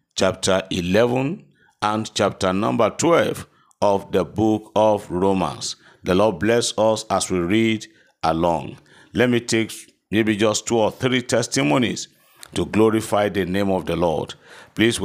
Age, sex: 50-69, male